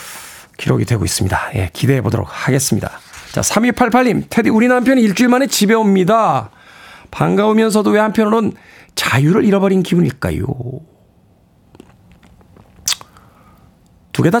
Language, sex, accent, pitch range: Korean, male, native, 140-215 Hz